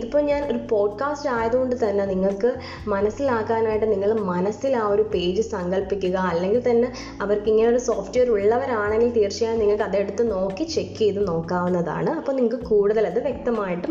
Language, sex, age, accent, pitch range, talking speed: Malayalam, female, 20-39, native, 190-245 Hz, 140 wpm